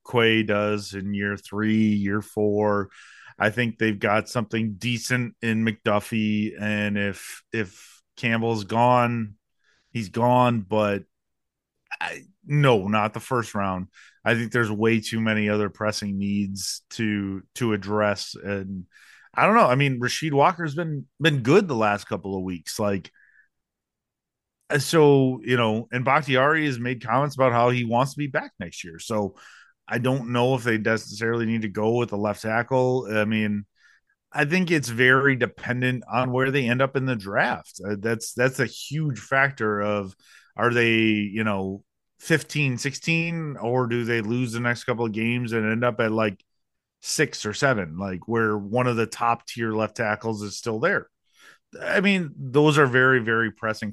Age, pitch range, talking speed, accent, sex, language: 30-49, 105-130 Hz, 170 wpm, American, male, English